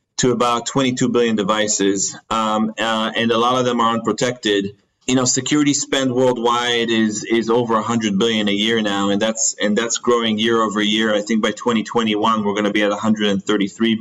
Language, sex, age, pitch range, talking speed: English, male, 30-49, 110-125 Hz, 195 wpm